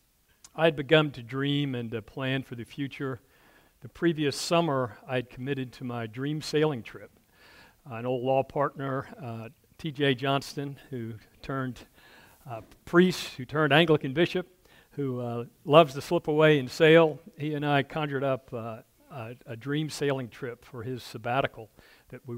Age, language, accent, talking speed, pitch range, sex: 50-69, English, American, 165 wpm, 120-150 Hz, male